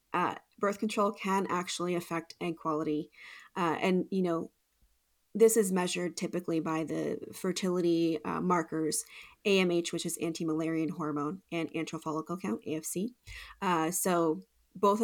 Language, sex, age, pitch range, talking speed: English, female, 30-49, 160-195 Hz, 140 wpm